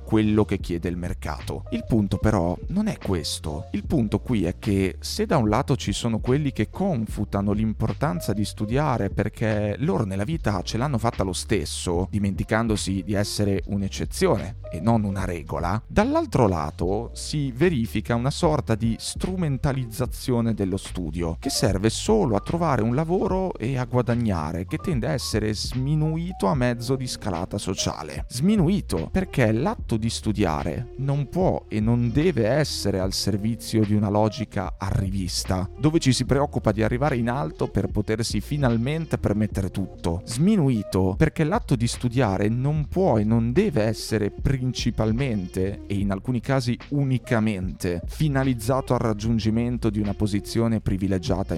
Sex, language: male, Italian